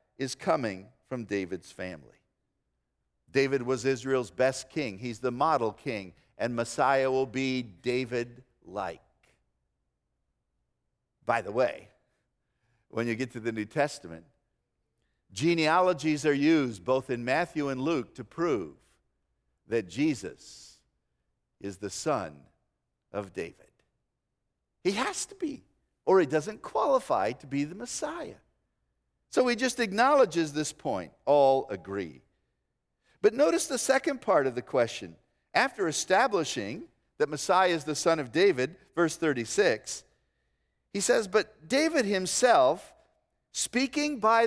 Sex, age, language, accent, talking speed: male, 50-69, English, American, 125 wpm